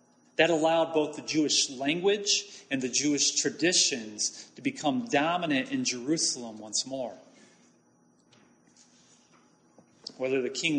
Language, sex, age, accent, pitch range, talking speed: English, male, 30-49, American, 150-215 Hz, 110 wpm